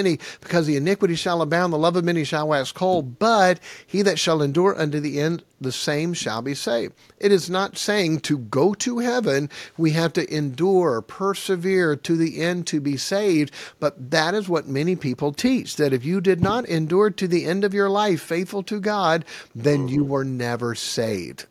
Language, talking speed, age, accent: English, 200 wpm, 50-69, American